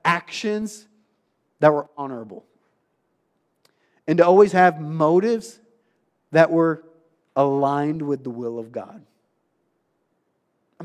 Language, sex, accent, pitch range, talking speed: English, male, American, 140-180 Hz, 100 wpm